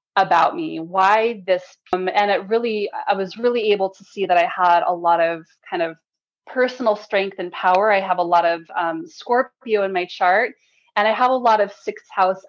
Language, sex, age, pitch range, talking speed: English, female, 20-39, 180-225 Hz, 210 wpm